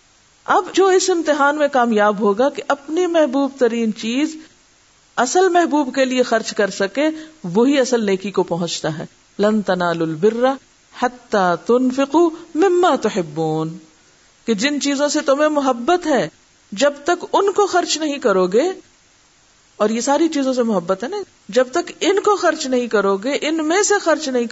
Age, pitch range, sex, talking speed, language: 50-69, 210-315 Hz, female, 165 wpm, Urdu